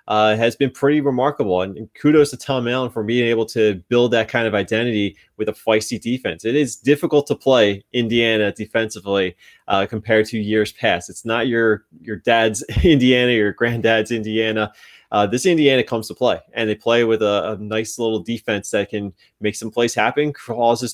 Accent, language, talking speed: American, English, 190 wpm